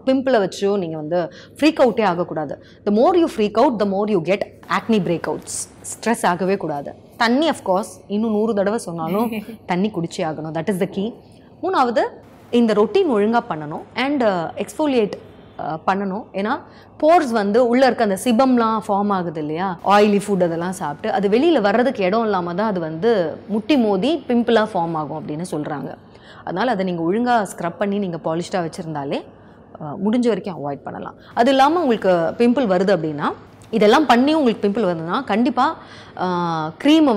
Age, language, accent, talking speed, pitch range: 30-49, Tamil, native, 160 wpm, 175-235 Hz